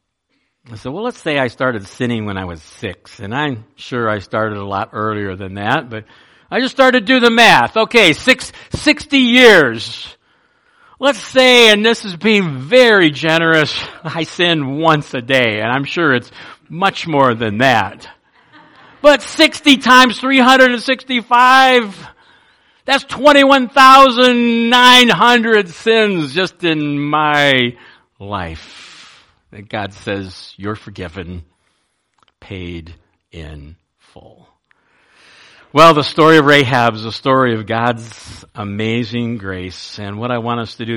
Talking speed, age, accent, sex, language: 135 wpm, 60-79, American, male, English